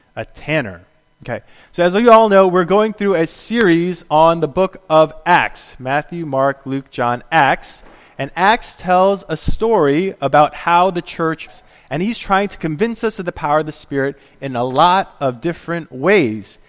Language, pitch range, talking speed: English, 140-190 Hz, 180 wpm